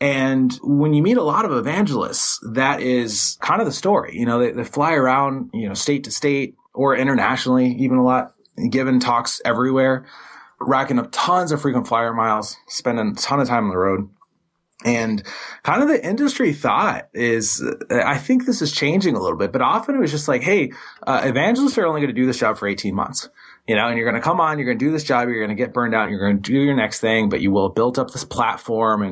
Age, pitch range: 20-39, 110-145 Hz